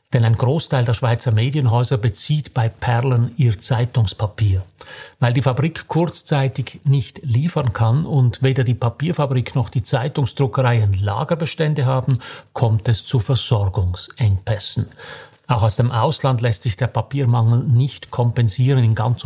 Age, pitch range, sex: 50-69, 110-140 Hz, male